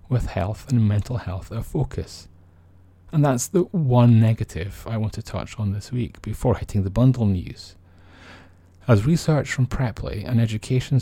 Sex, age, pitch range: male, 30-49, 90-120 Hz